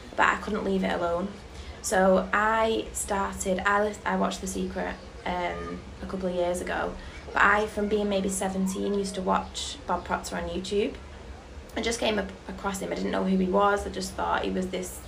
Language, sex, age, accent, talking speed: English, female, 20-39, British, 205 wpm